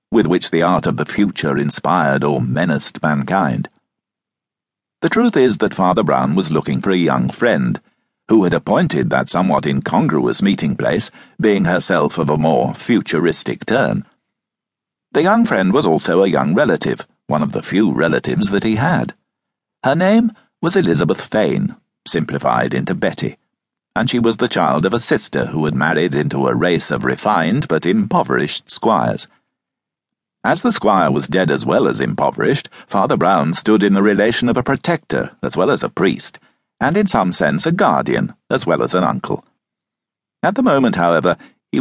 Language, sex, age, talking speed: English, male, 60-79, 170 wpm